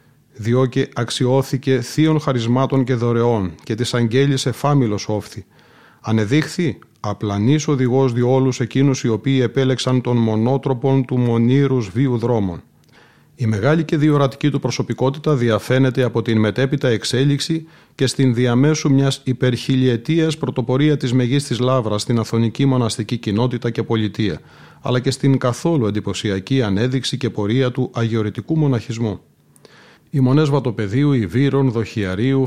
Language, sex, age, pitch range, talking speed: Greek, male, 30-49, 115-135 Hz, 125 wpm